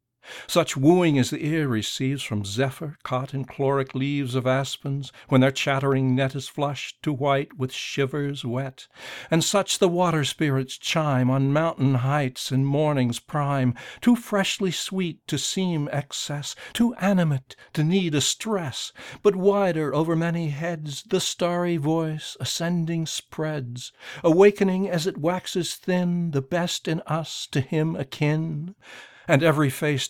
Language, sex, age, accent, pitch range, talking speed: English, male, 60-79, American, 130-165 Hz, 150 wpm